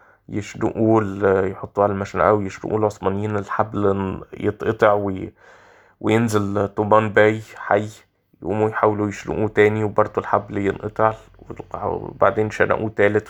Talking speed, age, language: 100 wpm, 20-39, Arabic